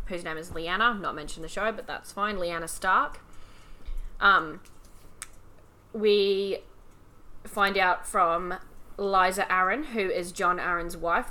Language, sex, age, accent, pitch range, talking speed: English, female, 10-29, Australian, 170-205 Hz, 145 wpm